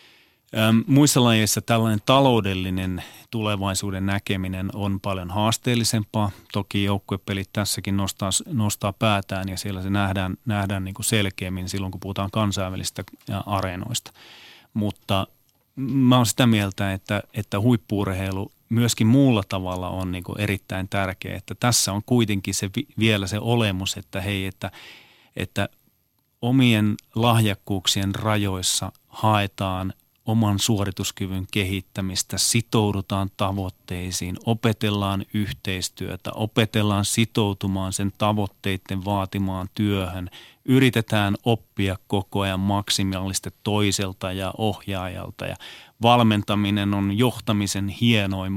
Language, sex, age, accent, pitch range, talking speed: Finnish, male, 30-49, native, 95-115 Hz, 105 wpm